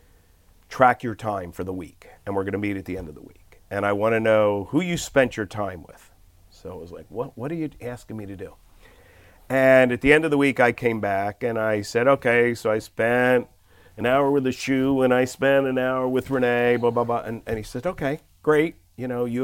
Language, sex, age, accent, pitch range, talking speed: English, male, 50-69, American, 95-125 Hz, 250 wpm